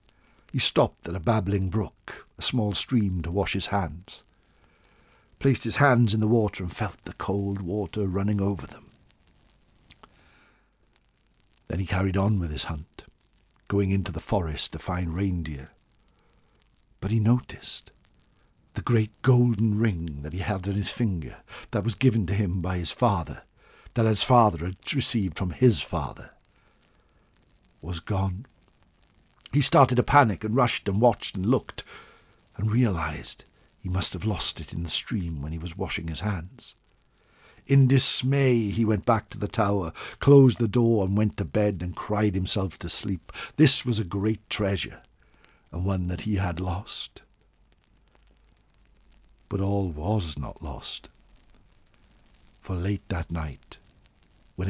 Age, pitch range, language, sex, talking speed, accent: 60-79, 90-110 Hz, English, male, 150 wpm, British